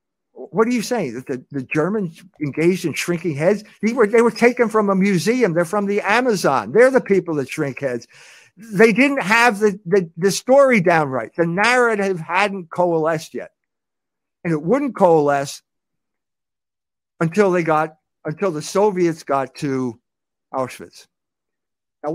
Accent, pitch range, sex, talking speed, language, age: American, 155-200 Hz, male, 155 wpm, English, 60-79